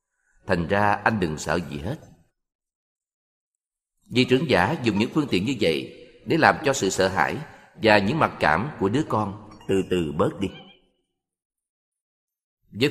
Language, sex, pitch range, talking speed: Vietnamese, male, 95-125 Hz, 160 wpm